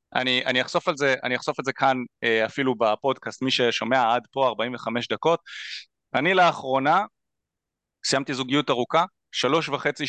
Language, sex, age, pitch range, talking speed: Hebrew, male, 30-49, 125-185 Hz, 125 wpm